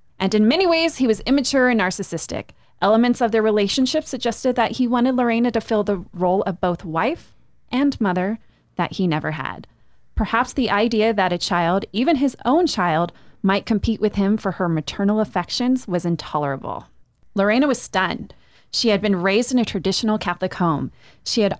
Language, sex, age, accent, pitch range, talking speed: English, female, 30-49, American, 185-245 Hz, 180 wpm